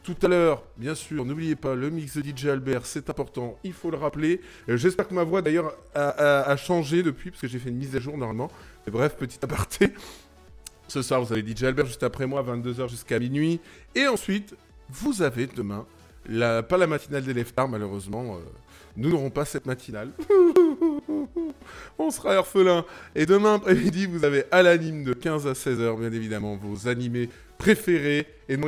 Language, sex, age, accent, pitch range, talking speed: English, male, 20-39, French, 120-185 Hz, 195 wpm